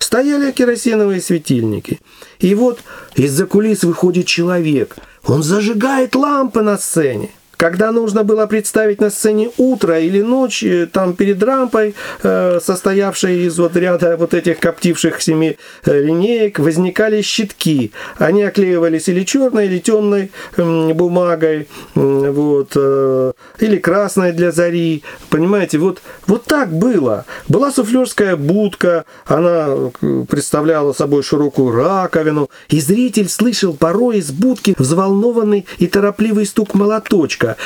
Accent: native